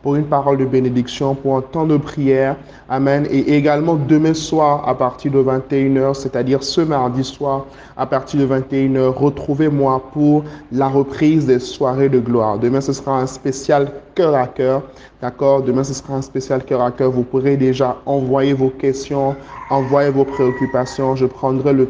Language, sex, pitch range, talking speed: French, male, 135-160 Hz, 175 wpm